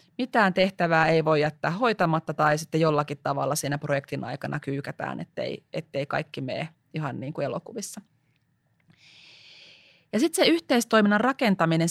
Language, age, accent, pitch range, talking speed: Finnish, 30-49, native, 150-190 Hz, 135 wpm